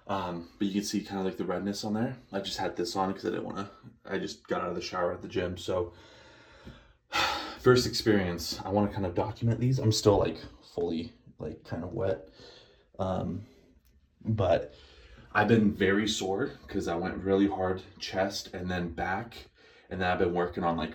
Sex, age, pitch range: male, 30-49, 90-105 Hz